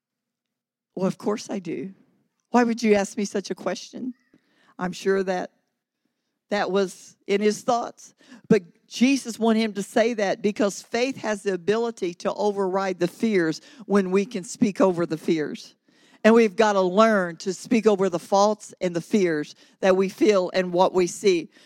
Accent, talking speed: American, 175 wpm